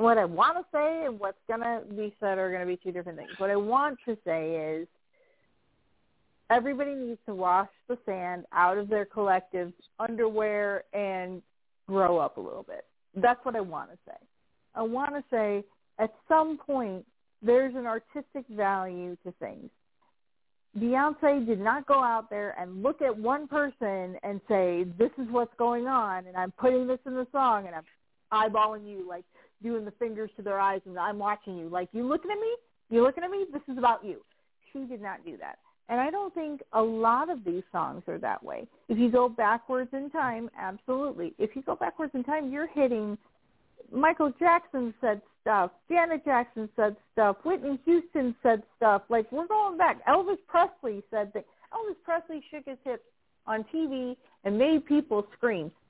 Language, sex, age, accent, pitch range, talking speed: English, female, 50-69, American, 205-280 Hz, 190 wpm